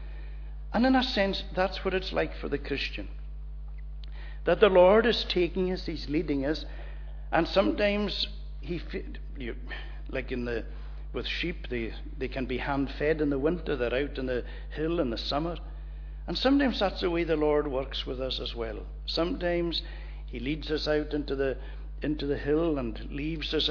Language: English